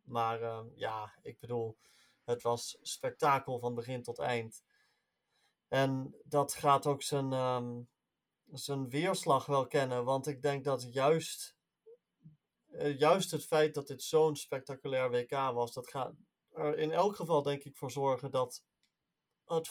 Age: 30-49